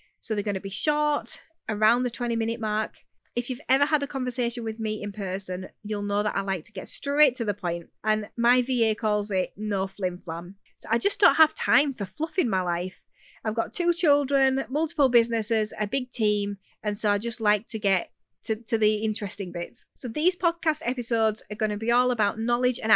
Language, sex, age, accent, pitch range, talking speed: English, female, 30-49, British, 205-250 Hz, 220 wpm